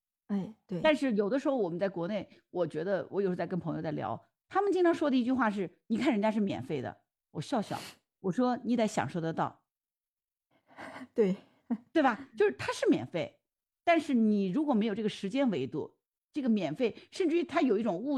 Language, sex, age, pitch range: Chinese, female, 50-69, 180-255 Hz